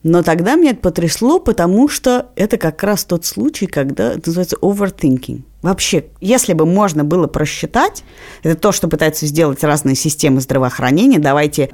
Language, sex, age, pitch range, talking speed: Russian, female, 30-49, 140-195 Hz, 160 wpm